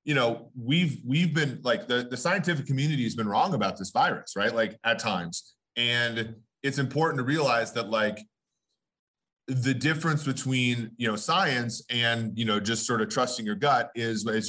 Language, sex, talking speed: English, male, 180 wpm